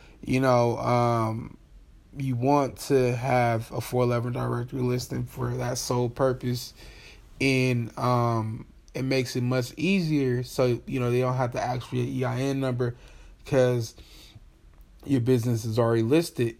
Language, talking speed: English, 145 wpm